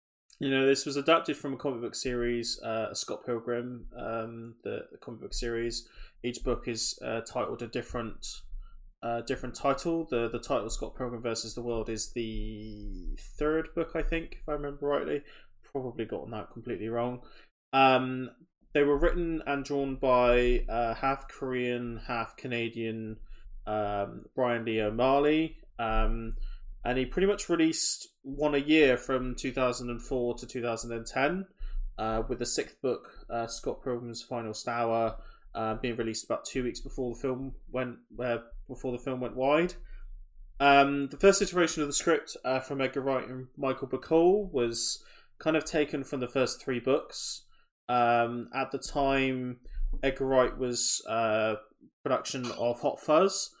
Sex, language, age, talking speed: male, English, 20-39, 160 wpm